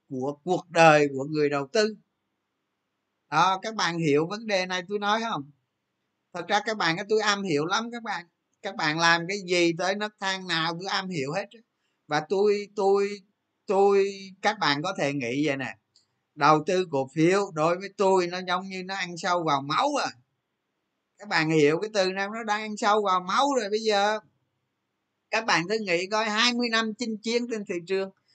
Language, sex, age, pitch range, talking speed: Vietnamese, male, 20-39, 160-215 Hz, 200 wpm